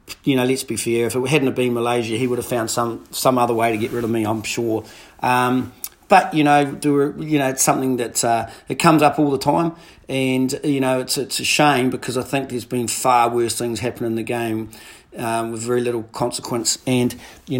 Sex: male